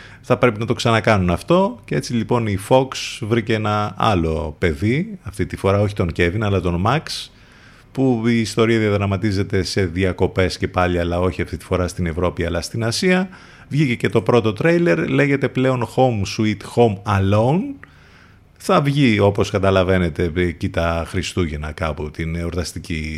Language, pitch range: Greek, 90-125 Hz